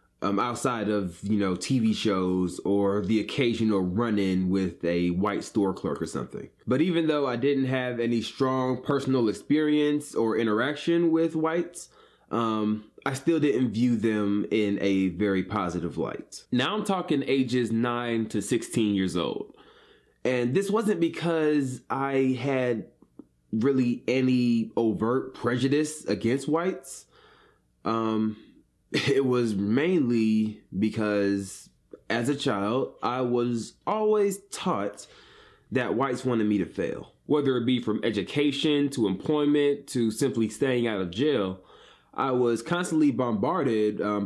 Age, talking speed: 20-39, 135 wpm